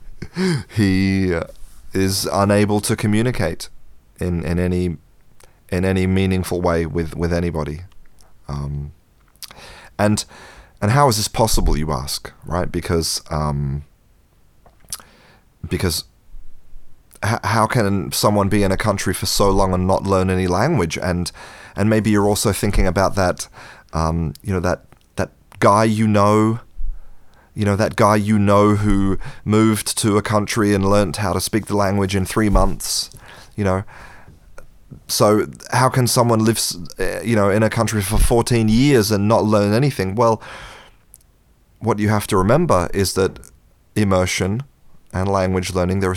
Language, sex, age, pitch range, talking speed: English, male, 30-49, 90-110 Hz, 145 wpm